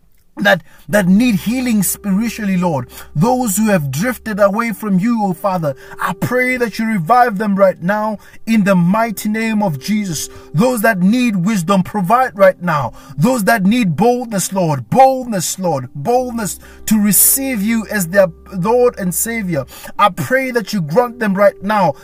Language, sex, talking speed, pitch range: English, male, 165 wpm, 180-225 Hz